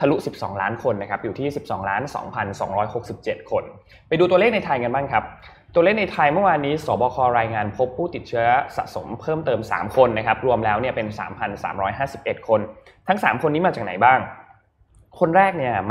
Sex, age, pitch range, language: male, 20-39, 110-155 Hz, Thai